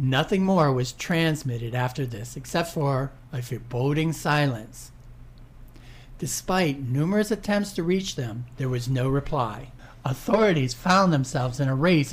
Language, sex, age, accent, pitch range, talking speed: English, male, 60-79, American, 125-160 Hz, 135 wpm